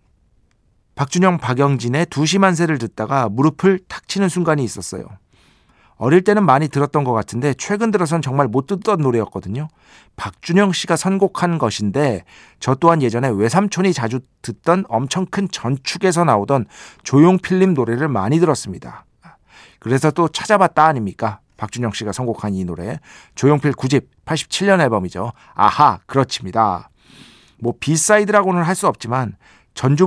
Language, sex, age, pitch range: Korean, male, 40-59, 110-155 Hz